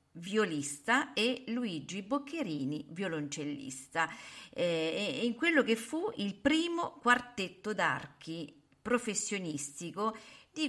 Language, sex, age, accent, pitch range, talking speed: Italian, female, 50-69, native, 155-220 Hz, 90 wpm